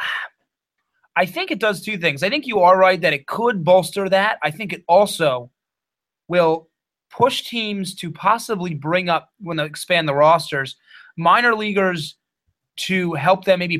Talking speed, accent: 165 wpm, American